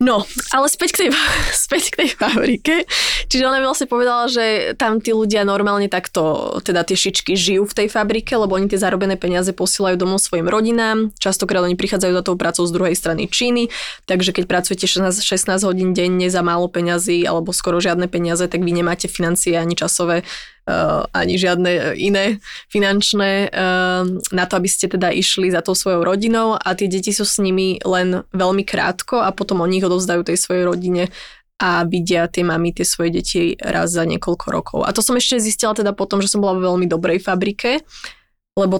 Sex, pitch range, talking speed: female, 180-210 Hz, 190 wpm